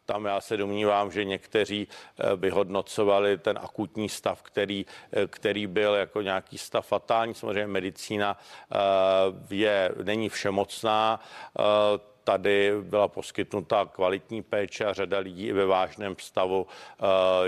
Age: 50-69